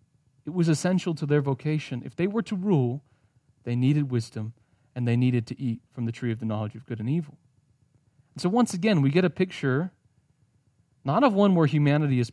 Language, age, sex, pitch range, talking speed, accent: English, 40-59, male, 125-145 Hz, 205 wpm, American